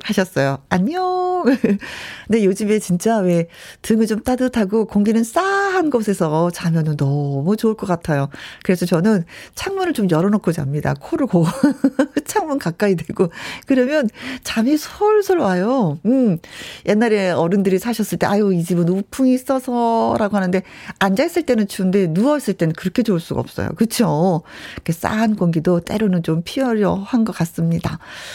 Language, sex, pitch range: Korean, female, 180-255 Hz